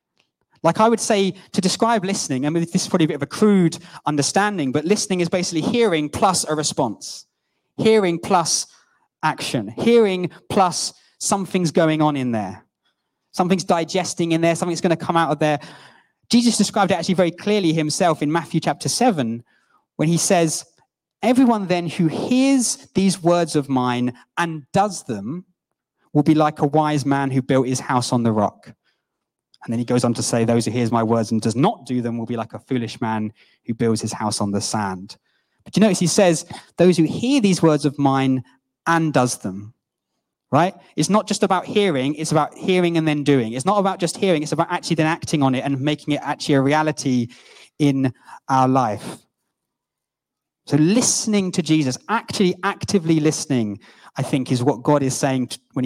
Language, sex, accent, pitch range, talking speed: English, male, British, 130-185 Hz, 190 wpm